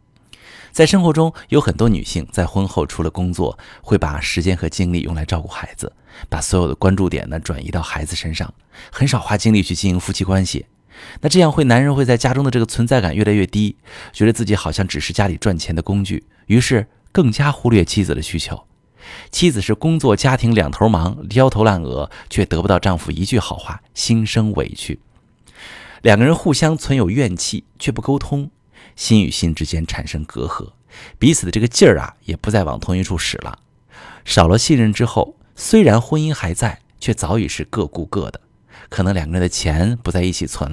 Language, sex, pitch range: Chinese, male, 85-115 Hz